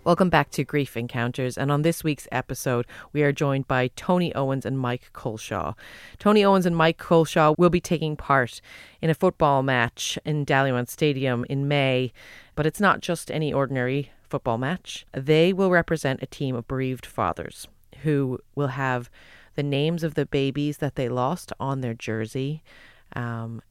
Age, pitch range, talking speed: 40-59, 125-150 Hz, 170 wpm